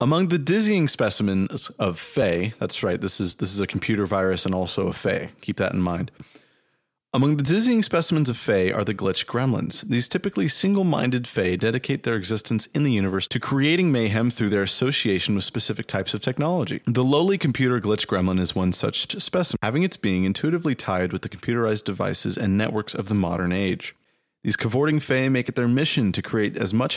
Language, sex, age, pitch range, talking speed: English, male, 30-49, 100-135 Hz, 195 wpm